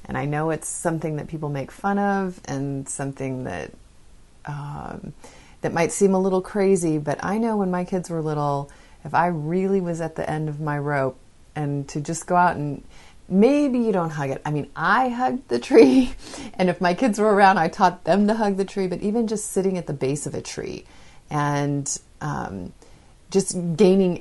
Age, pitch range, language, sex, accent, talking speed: 30-49, 145-185 Hz, English, female, American, 205 wpm